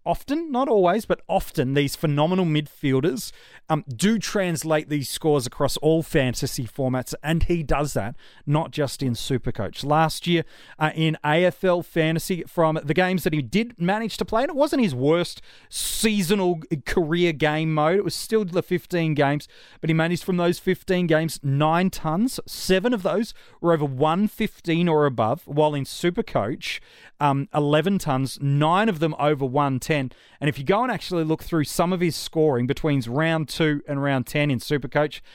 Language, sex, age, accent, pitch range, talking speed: English, male, 30-49, Australian, 145-180 Hz, 175 wpm